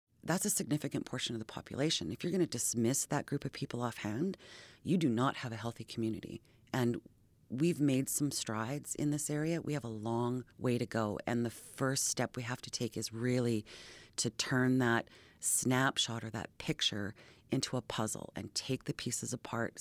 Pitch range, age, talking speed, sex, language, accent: 115-135 Hz, 30-49, 195 wpm, female, English, American